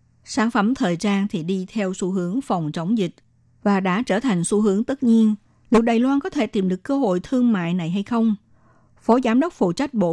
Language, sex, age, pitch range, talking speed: Vietnamese, female, 60-79, 180-230 Hz, 235 wpm